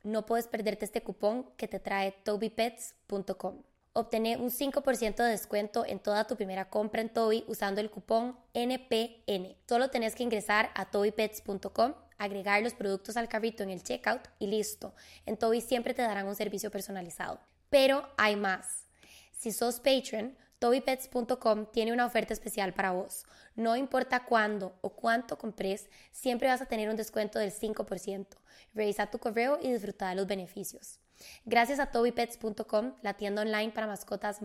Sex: female